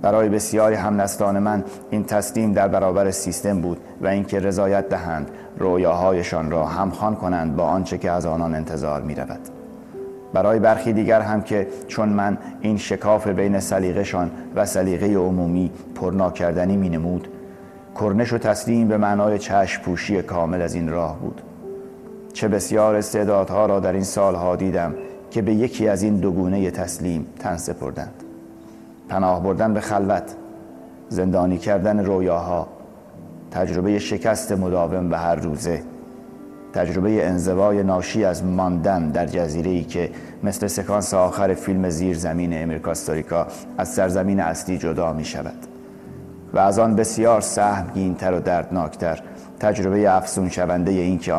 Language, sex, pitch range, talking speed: Persian, male, 85-105 Hz, 140 wpm